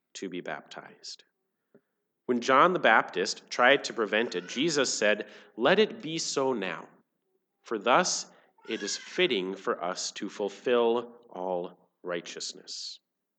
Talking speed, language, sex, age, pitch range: 130 wpm, English, male, 40-59, 110-180 Hz